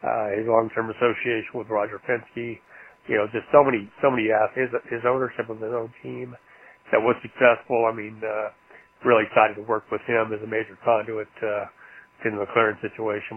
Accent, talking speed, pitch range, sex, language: American, 195 wpm, 110-115 Hz, male, English